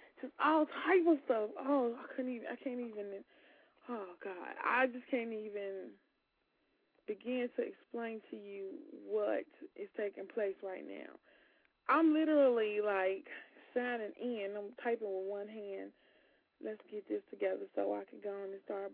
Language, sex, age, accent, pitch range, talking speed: English, female, 20-39, American, 215-315 Hz, 160 wpm